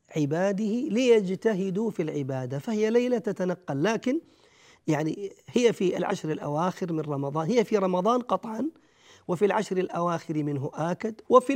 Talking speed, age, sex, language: 130 wpm, 40-59, male, Arabic